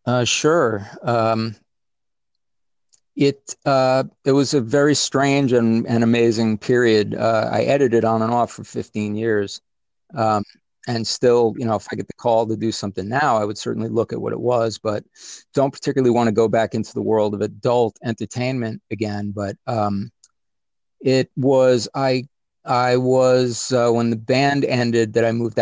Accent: American